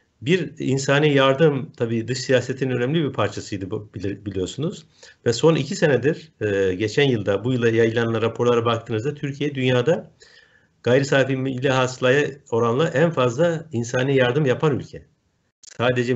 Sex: male